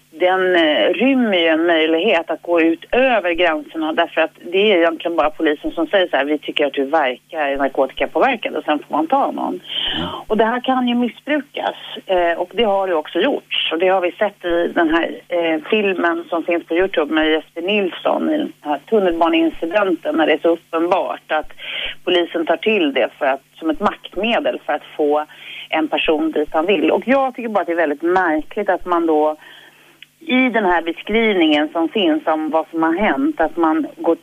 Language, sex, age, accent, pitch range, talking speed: Swedish, female, 40-59, native, 155-210 Hz, 205 wpm